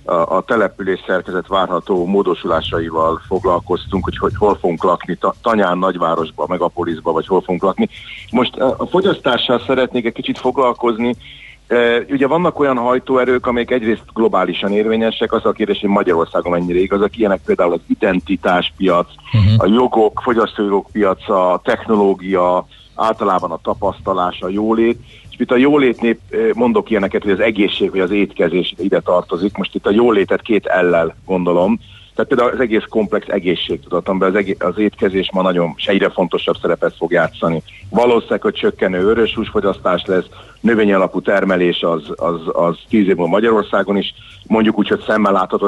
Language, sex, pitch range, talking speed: Hungarian, male, 90-120 Hz, 150 wpm